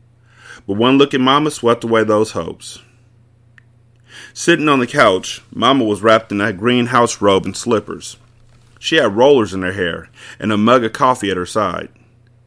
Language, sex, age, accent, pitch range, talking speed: English, male, 30-49, American, 100-120 Hz, 180 wpm